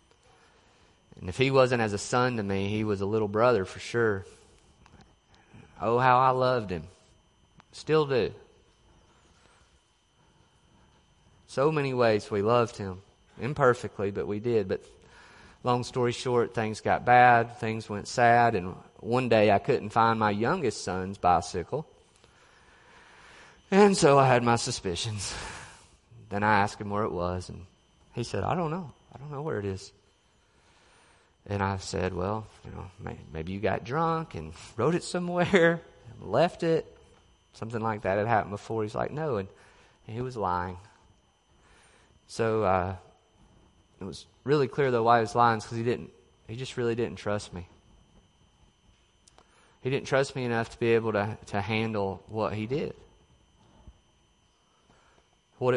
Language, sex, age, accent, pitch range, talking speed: English, male, 30-49, American, 100-125 Hz, 155 wpm